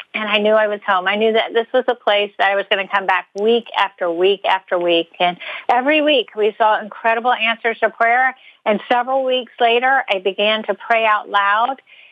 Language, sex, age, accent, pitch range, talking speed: English, female, 50-69, American, 215-290 Hz, 220 wpm